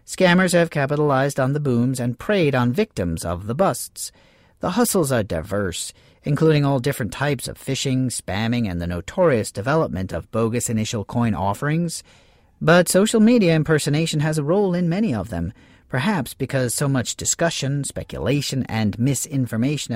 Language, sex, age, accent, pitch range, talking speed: English, male, 40-59, American, 110-160 Hz, 155 wpm